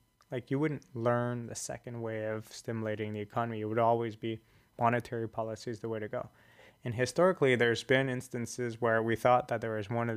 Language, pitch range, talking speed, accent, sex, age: English, 110-130 Hz, 205 wpm, American, male, 20-39